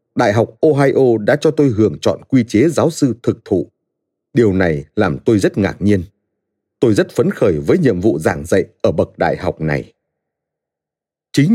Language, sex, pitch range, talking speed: Vietnamese, male, 105-145 Hz, 185 wpm